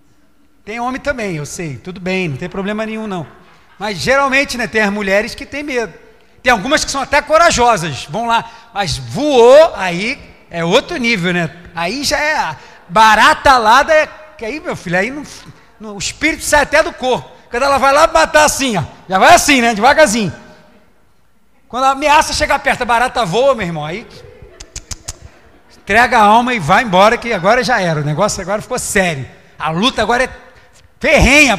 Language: Portuguese